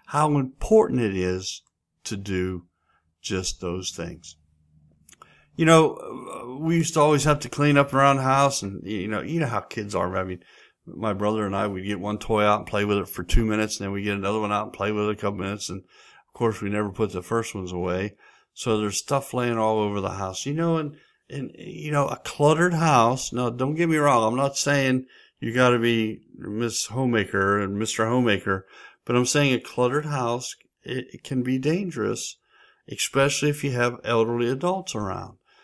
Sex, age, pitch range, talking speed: male, 50-69, 105-140 Hz, 205 wpm